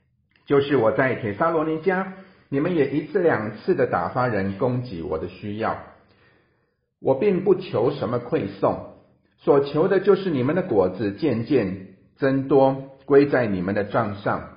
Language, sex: Chinese, male